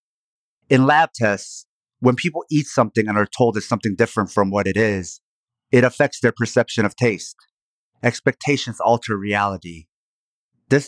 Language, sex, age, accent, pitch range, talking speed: English, male, 30-49, American, 105-130 Hz, 150 wpm